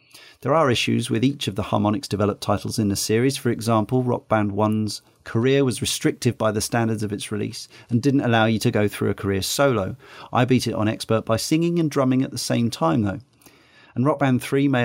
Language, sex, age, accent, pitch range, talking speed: English, male, 40-59, British, 110-130 Hz, 225 wpm